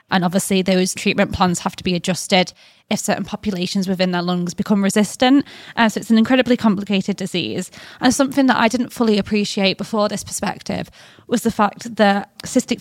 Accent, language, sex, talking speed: British, English, female, 185 wpm